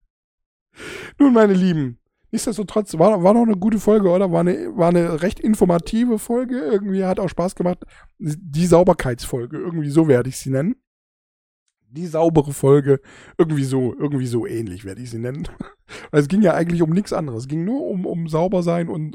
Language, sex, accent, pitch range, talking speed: German, male, German, 145-190 Hz, 190 wpm